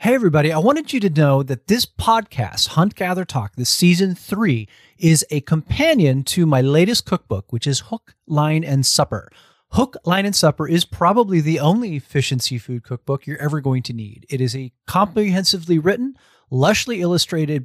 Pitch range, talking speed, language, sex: 130-185 Hz, 175 wpm, English, male